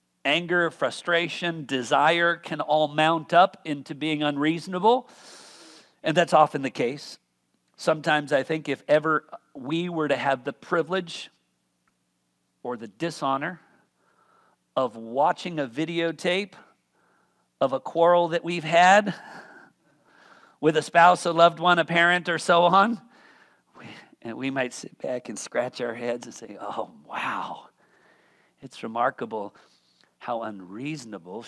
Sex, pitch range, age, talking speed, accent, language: male, 145-200 Hz, 50-69, 130 wpm, American, English